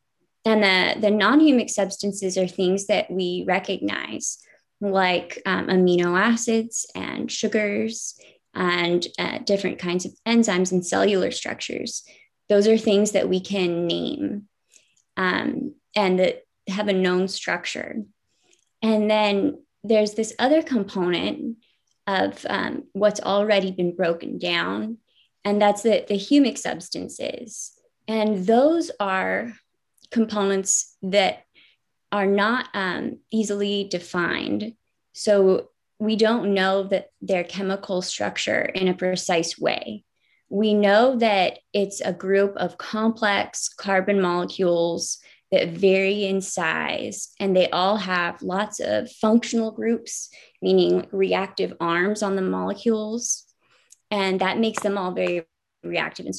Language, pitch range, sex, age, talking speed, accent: English, 185-220 Hz, female, 20-39, 125 wpm, American